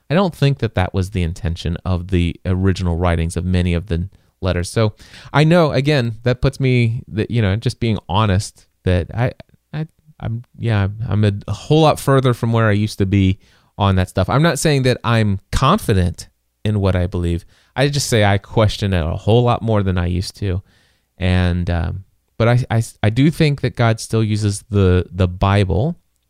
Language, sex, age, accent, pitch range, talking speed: English, male, 30-49, American, 90-115 Hz, 200 wpm